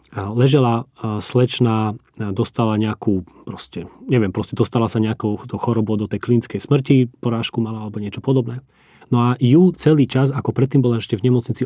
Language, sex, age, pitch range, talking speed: Slovak, male, 30-49, 105-125 Hz, 160 wpm